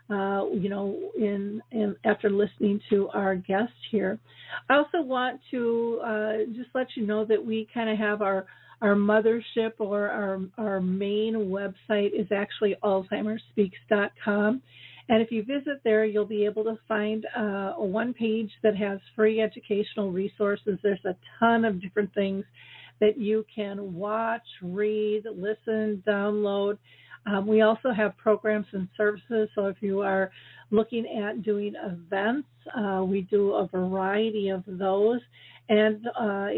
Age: 50-69